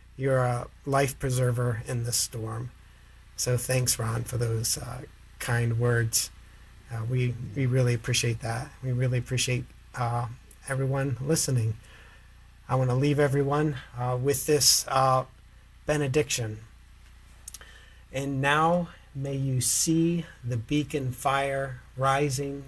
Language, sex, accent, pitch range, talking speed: English, male, American, 115-135 Hz, 120 wpm